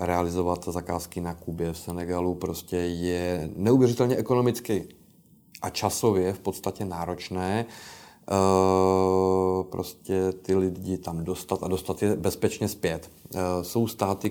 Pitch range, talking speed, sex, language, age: 90-115 Hz, 120 wpm, male, Slovak, 30-49